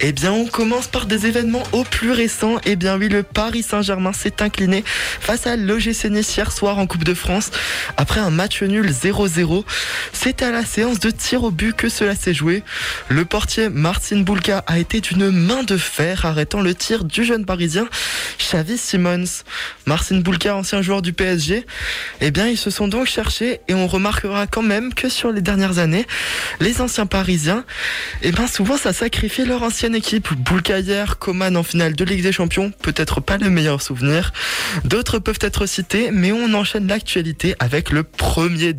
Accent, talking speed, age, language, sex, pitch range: French, 185 wpm, 20-39, French, male, 180-220 Hz